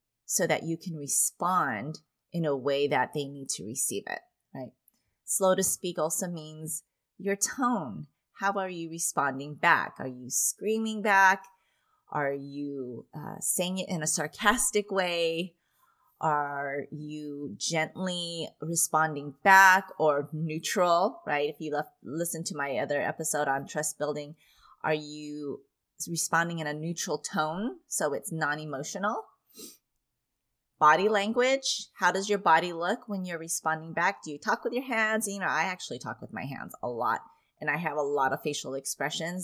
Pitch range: 150-200 Hz